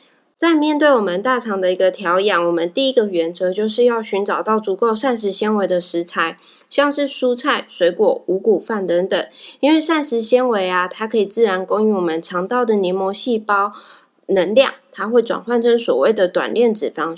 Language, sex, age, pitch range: Chinese, female, 20-39, 190-250 Hz